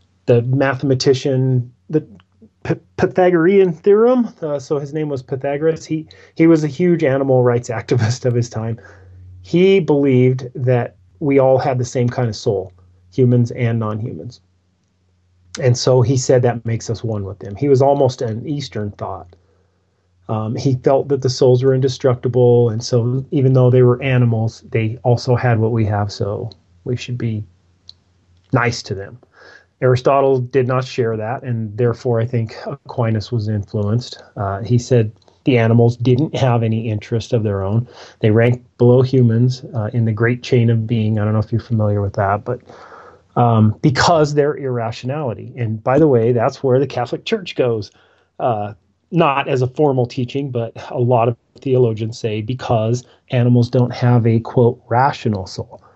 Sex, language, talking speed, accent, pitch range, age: male, English, 170 wpm, American, 110-130 Hz, 30-49